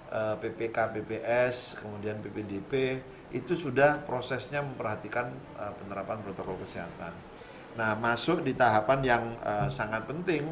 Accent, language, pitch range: native, Indonesian, 100-130 Hz